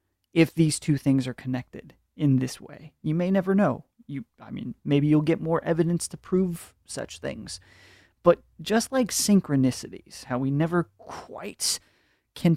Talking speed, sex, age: 160 wpm, male, 30-49